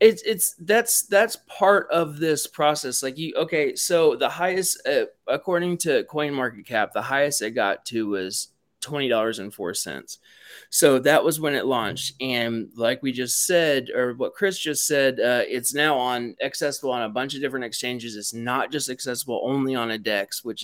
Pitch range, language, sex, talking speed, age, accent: 115-145 Hz, English, male, 190 wpm, 20-39, American